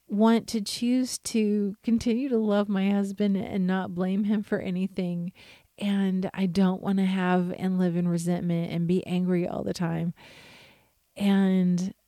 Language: English